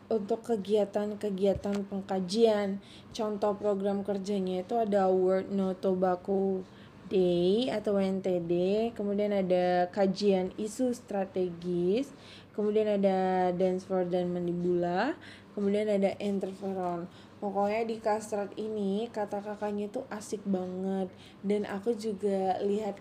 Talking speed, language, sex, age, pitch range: 105 wpm, Indonesian, female, 20-39, 190-210 Hz